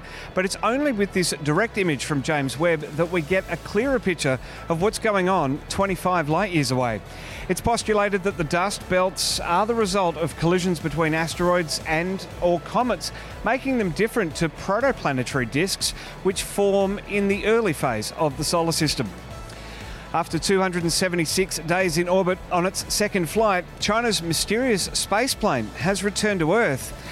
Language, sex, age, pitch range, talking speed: English, male, 40-59, 155-200 Hz, 160 wpm